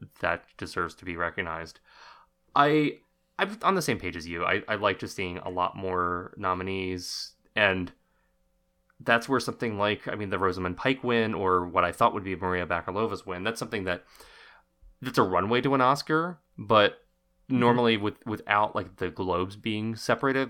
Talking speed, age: 175 wpm, 20-39